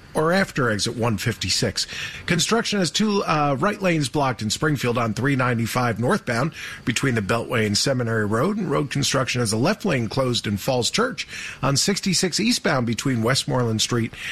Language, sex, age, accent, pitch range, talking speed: English, male, 40-59, American, 115-170 Hz, 165 wpm